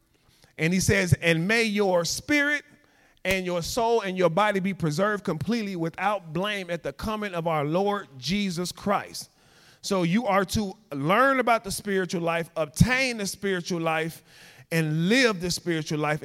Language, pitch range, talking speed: English, 160-220 Hz, 165 wpm